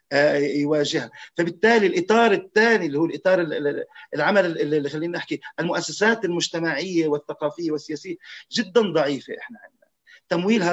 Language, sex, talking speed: Arabic, male, 105 wpm